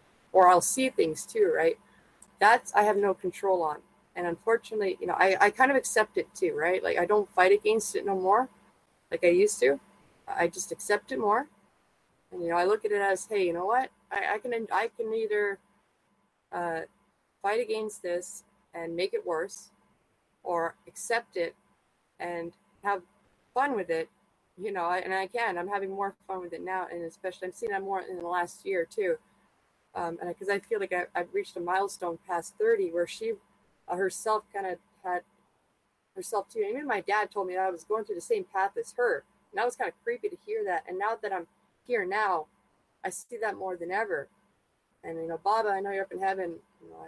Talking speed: 215 wpm